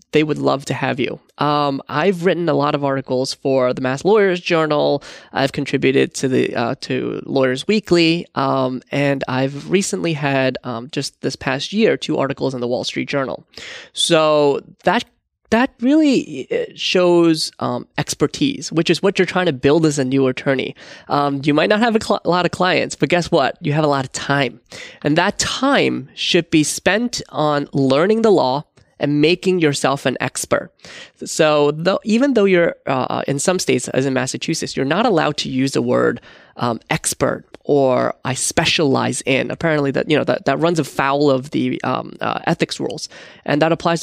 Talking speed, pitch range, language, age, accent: 190 wpm, 135-180 Hz, English, 20-39, American